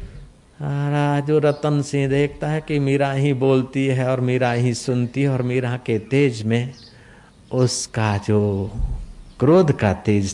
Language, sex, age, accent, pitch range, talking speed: Hindi, male, 50-69, native, 105-140 Hz, 150 wpm